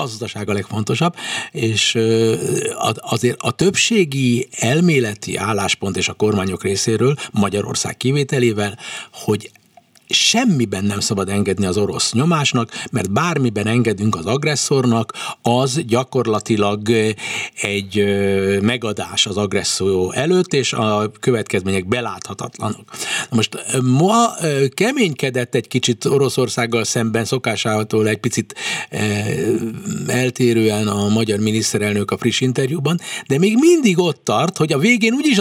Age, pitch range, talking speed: 60-79, 110-175 Hz, 110 wpm